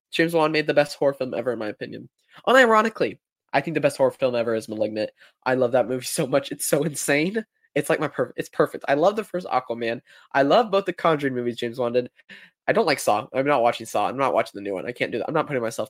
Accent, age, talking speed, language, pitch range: American, 20-39, 270 wpm, English, 140-205 Hz